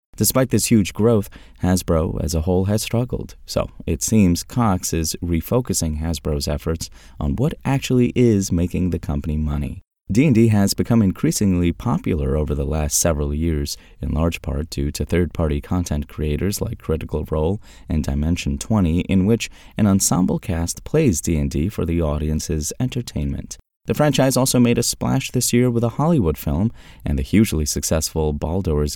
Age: 30-49